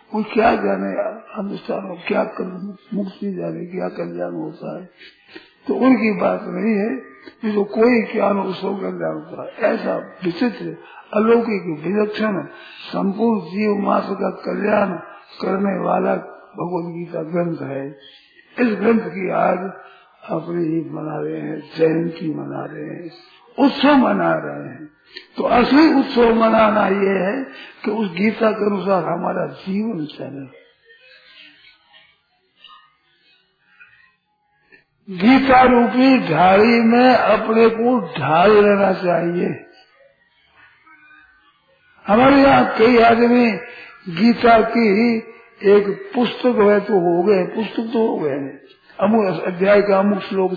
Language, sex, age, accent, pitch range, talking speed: Hindi, male, 50-69, native, 175-230 Hz, 115 wpm